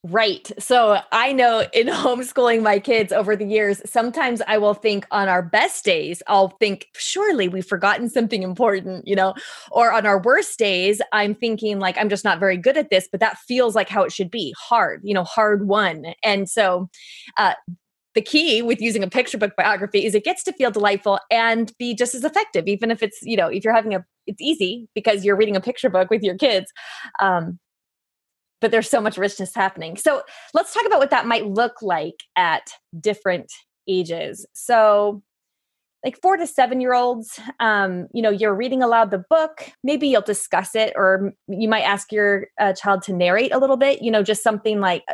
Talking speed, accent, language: 205 wpm, American, English